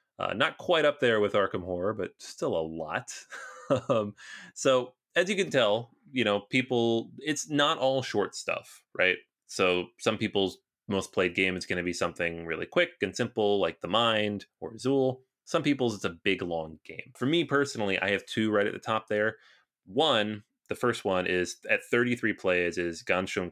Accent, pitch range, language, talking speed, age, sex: American, 90-115 Hz, English, 190 wpm, 30-49, male